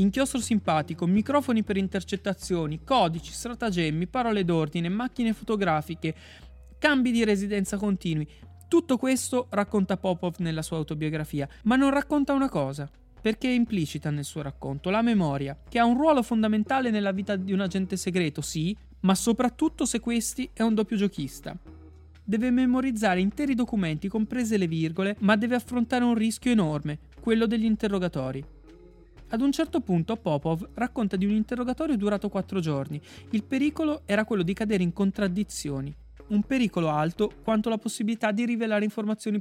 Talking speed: 150 wpm